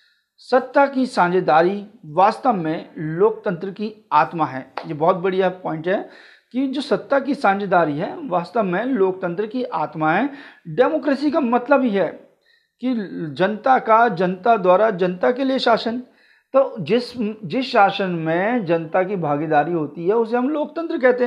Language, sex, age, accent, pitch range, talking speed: Hindi, male, 40-59, native, 180-255 Hz, 150 wpm